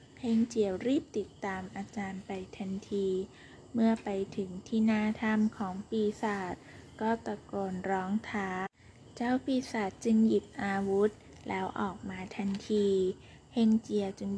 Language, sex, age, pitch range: Thai, female, 20-39, 195-225 Hz